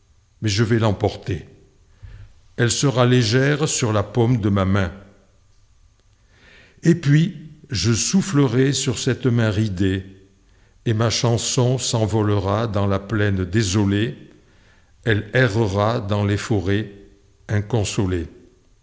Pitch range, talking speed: 100-130 Hz, 110 wpm